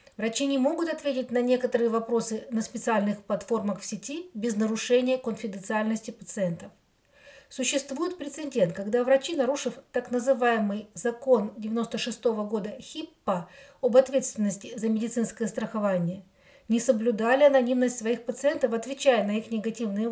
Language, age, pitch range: Ukrainian, 40-59, 220-265 Hz